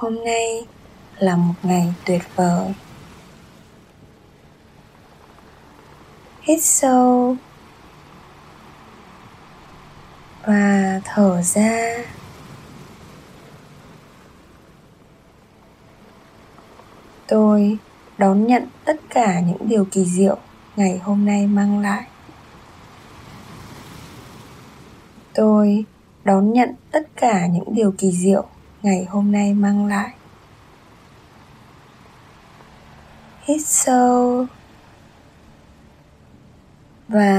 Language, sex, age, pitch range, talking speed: Vietnamese, female, 20-39, 185-230 Hz, 70 wpm